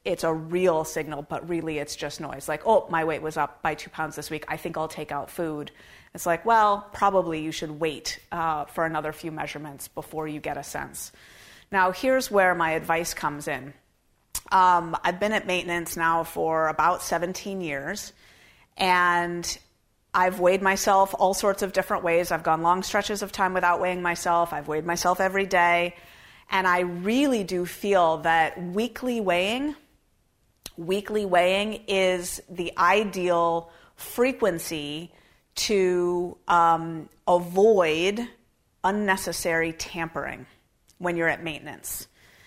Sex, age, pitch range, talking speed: female, 30-49, 160-190 Hz, 150 wpm